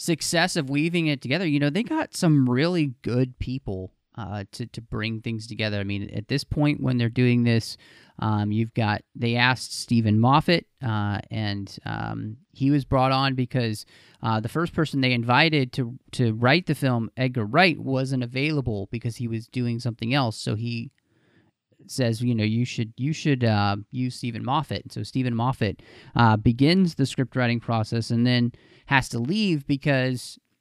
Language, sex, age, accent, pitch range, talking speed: English, male, 30-49, American, 115-140 Hz, 180 wpm